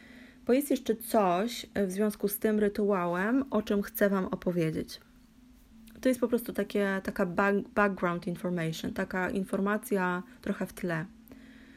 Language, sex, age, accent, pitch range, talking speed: Polish, female, 20-39, native, 195-240 Hz, 140 wpm